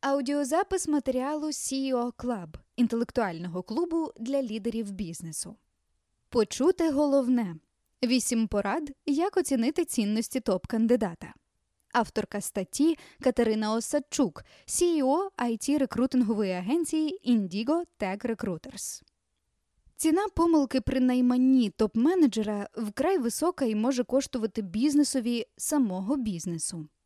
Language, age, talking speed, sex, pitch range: Ukrainian, 20-39, 90 wpm, female, 210-280 Hz